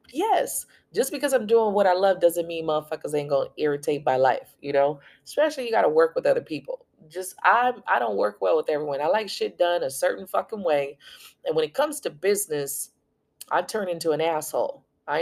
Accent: American